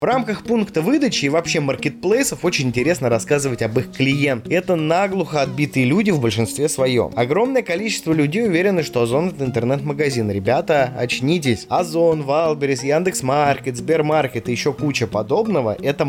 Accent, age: native, 20-39